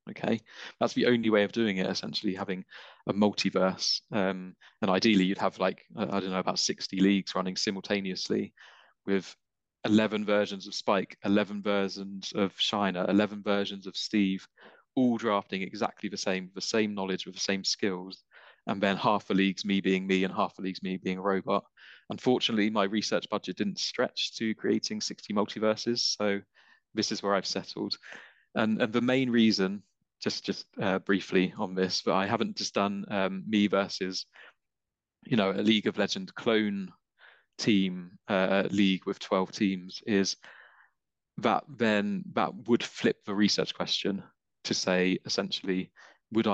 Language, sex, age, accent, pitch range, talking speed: English, male, 20-39, British, 95-105 Hz, 165 wpm